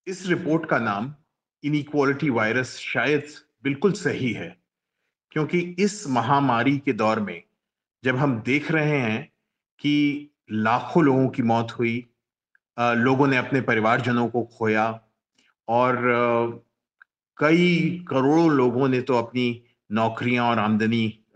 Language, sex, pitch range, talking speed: Hindi, male, 120-160 Hz, 120 wpm